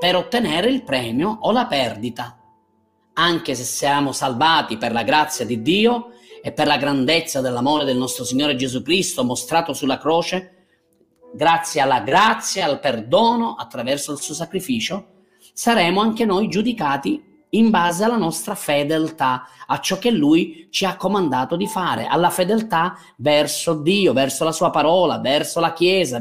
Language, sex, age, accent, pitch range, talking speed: Italian, male, 30-49, native, 150-230 Hz, 155 wpm